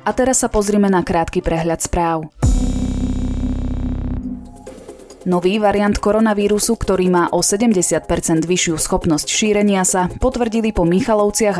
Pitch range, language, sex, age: 165-205 Hz, Slovak, female, 20-39